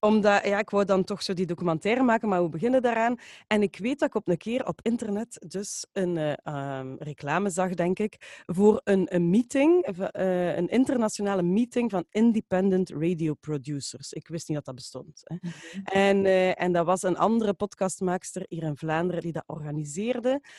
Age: 30-49